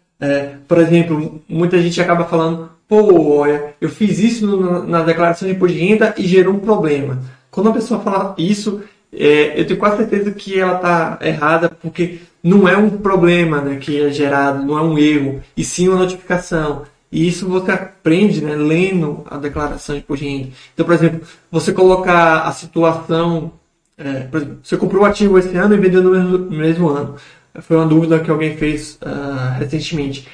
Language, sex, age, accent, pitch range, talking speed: Portuguese, male, 20-39, Brazilian, 150-190 Hz, 180 wpm